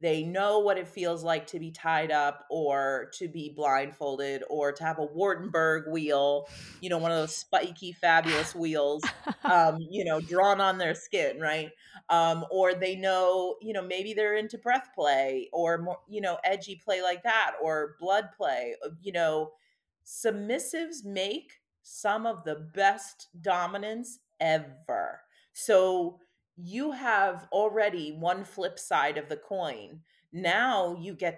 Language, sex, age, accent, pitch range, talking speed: English, female, 30-49, American, 155-205 Hz, 155 wpm